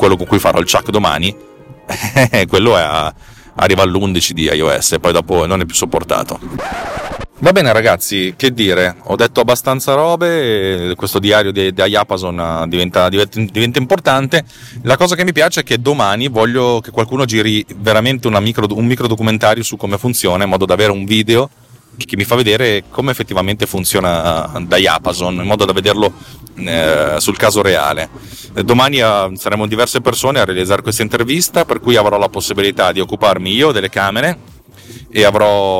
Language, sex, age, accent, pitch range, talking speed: Italian, male, 30-49, native, 95-125 Hz, 175 wpm